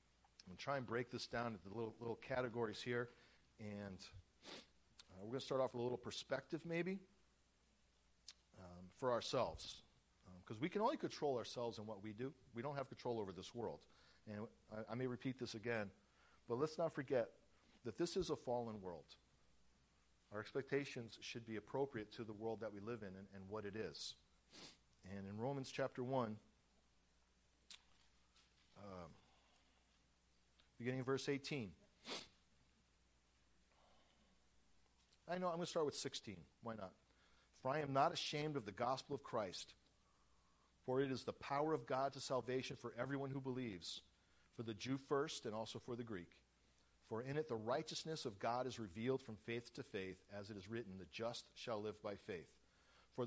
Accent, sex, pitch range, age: American, male, 95-135 Hz, 40-59